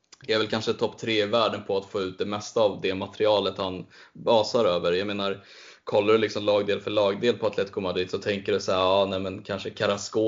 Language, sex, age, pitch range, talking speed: Swedish, male, 10-29, 100-120 Hz, 235 wpm